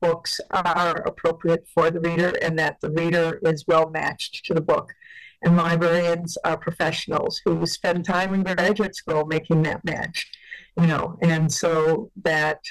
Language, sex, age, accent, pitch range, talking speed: English, female, 60-79, American, 165-185 Hz, 160 wpm